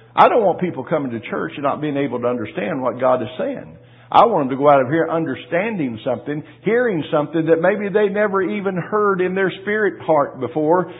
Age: 50-69